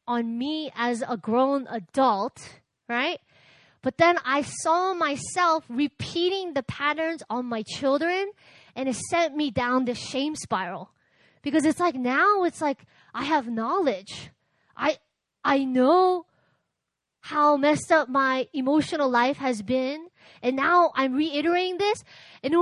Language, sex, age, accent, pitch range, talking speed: English, female, 20-39, American, 255-325 Hz, 140 wpm